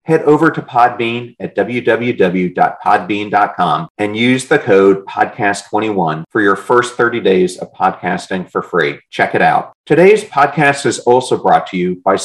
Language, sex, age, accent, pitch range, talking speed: English, male, 40-59, American, 95-140 Hz, 150 wpm